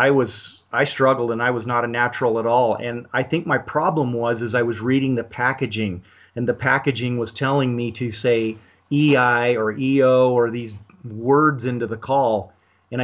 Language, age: English, 40-59